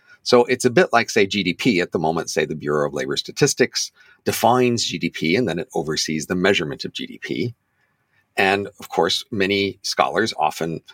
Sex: male